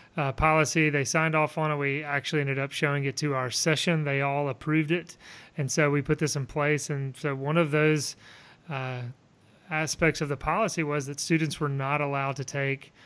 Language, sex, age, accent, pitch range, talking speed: English, male, 30-49, American, 135-160 Hz, 205 wpm